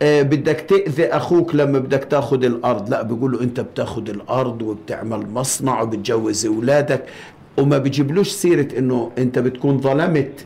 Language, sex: Arabic, male